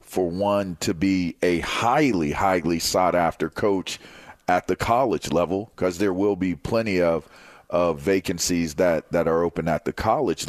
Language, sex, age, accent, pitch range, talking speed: English, male, 40-59, American, 85-110 Hz, 160 wpm